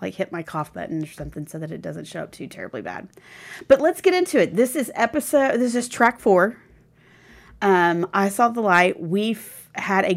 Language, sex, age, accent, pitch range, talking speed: English, female, 30-49, American, 175-215 Hz, 210 wpm